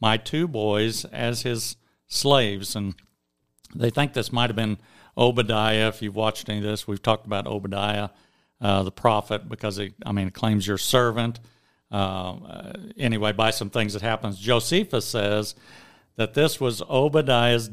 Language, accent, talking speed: English, American, 160 wpm